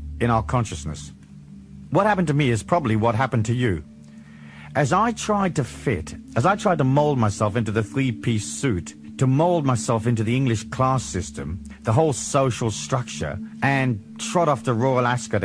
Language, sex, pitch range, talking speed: English, male, 100-160 Hz, 180 wpm